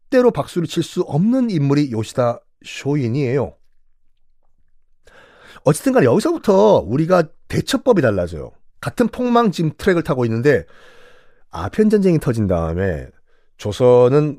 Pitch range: 120-195 Hz